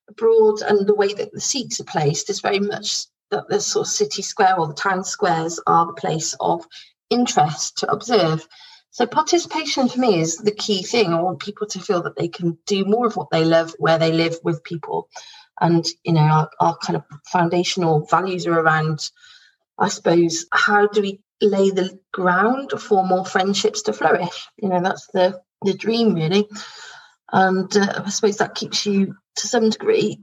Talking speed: 195 wpm